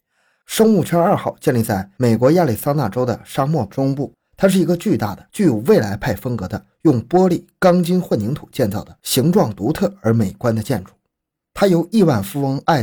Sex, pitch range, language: male, 110-160 Hz, Chinese